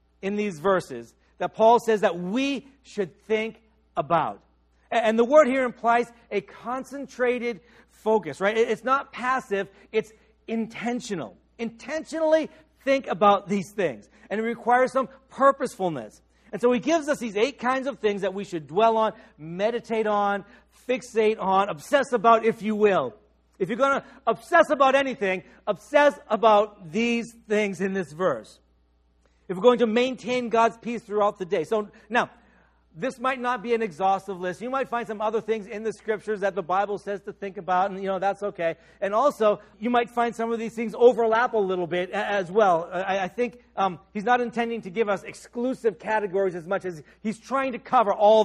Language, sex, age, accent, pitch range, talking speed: English, male, 50-69, American, 195-240 Hz, 180 wpm